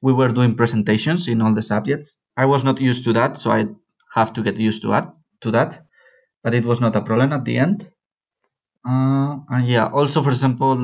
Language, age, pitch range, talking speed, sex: English, 20-39, 110-135 Hz, 210 wpm, male